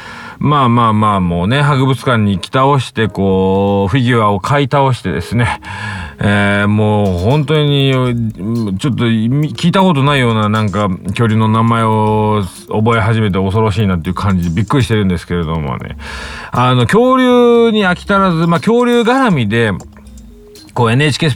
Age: 40-59